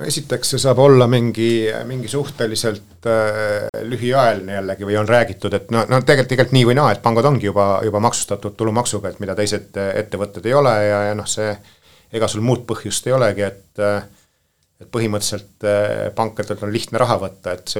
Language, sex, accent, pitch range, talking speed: English, male, Finnish, 100-110 Hz, 180 wpm